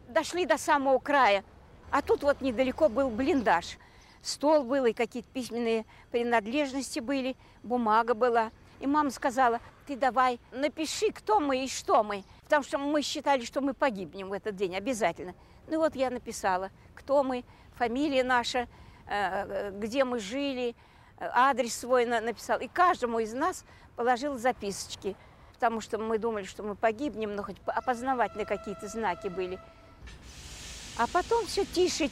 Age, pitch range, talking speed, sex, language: 50-69, 225-285 Hz, 145 wpm, female, Russian